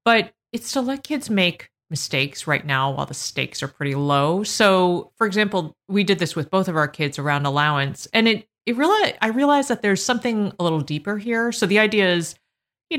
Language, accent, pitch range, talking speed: English, American, 155-210 Hz, 210 wpm